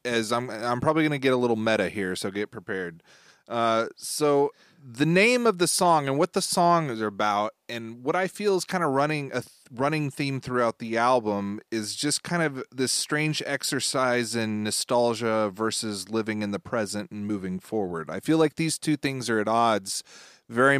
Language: English